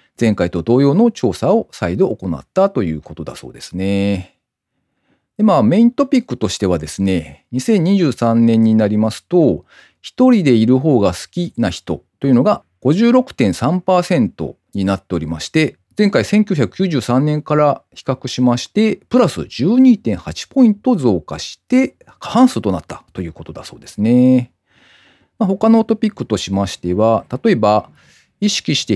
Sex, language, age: male, Japanese, 40-59